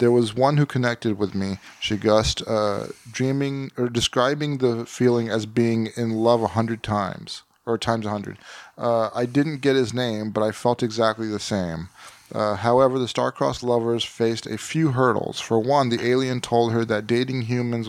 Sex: male